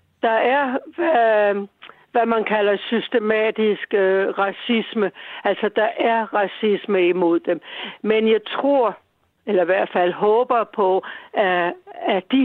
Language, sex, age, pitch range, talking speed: Danish, female, 60-79, 195-245 Hz, 125 wpm